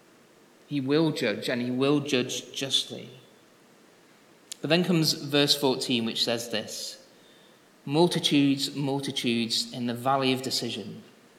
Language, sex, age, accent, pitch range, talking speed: English, male, 30-49, British, 120-150 Hz, 120 wpm